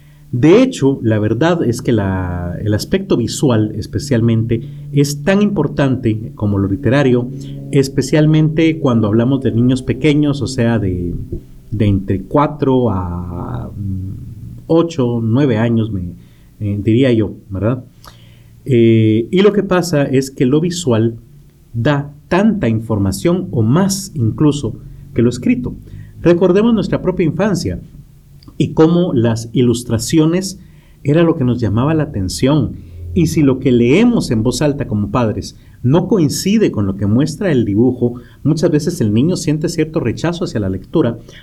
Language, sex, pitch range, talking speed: Spanish, male, 110-150 Hz, 145 wpm